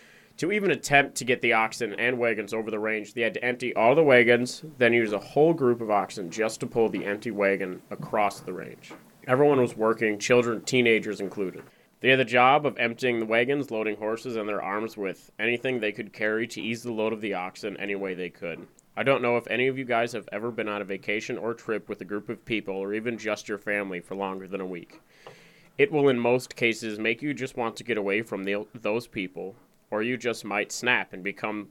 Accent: American